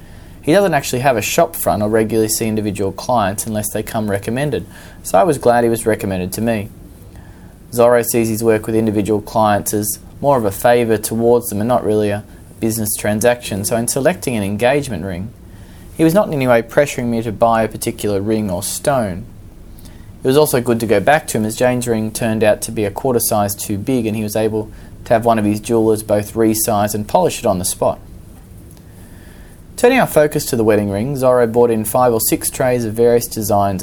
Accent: Australian